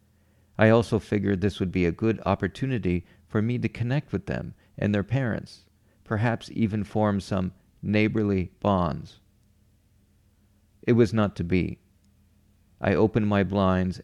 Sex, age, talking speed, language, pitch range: male, 40-59, 140 wpm, English, 95-105 Hz